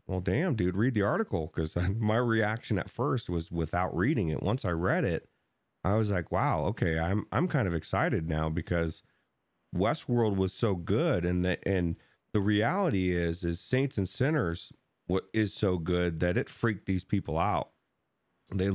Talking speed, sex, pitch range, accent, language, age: 180 wpm, male, 85-105 Hz, American, English, 30-49